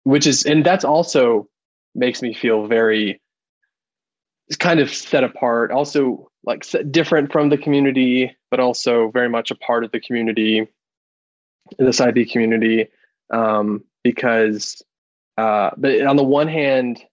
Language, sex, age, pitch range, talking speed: English, male, 20-39, 110-140 Hz, 145 wpm